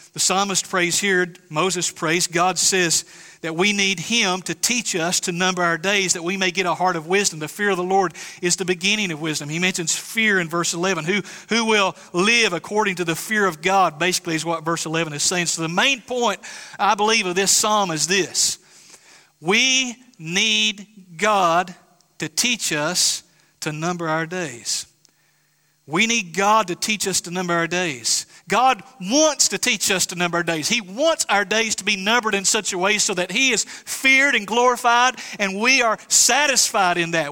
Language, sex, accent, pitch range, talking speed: English, male, American, 180-230 Hz, 200 wpm